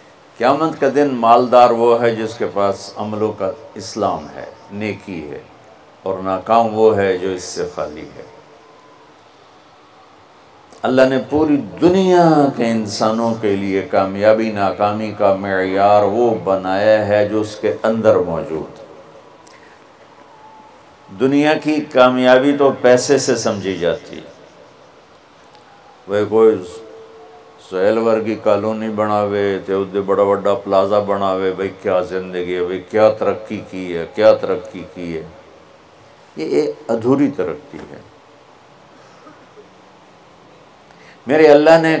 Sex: male